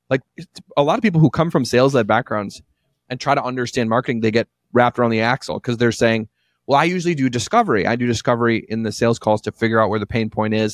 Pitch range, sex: 110-145 Hz, male